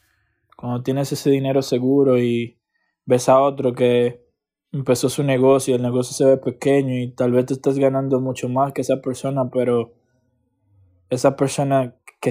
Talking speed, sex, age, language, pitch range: 165 wpm, male, 20-39, English, 125-140 Hz